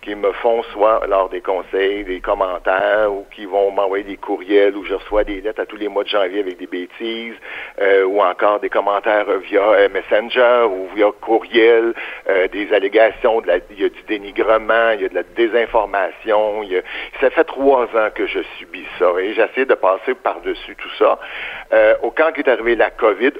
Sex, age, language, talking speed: male, 60-79, French, 205 wpm